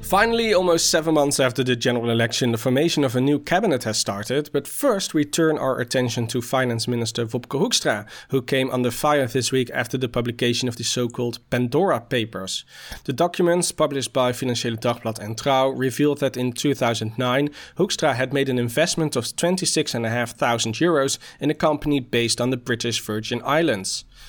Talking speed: 175 wpm